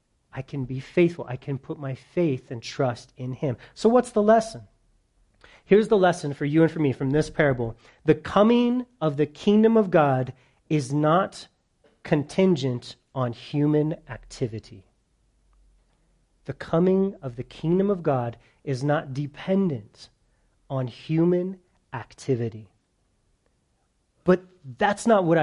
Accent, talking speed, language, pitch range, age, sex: American, 135 wpm, English, 130-185 Hz, 40-59, male